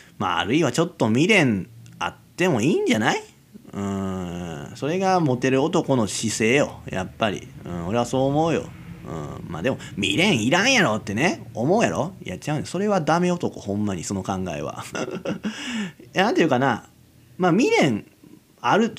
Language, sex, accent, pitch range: Japanese, male, native, 105-170 Hz